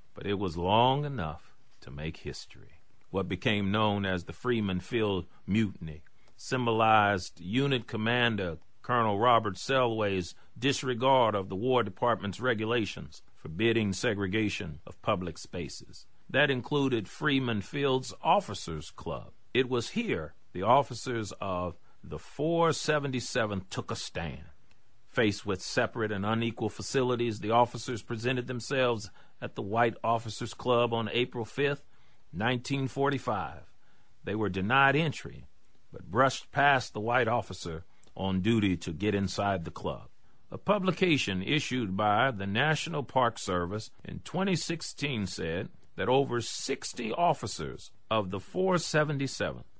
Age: 40-59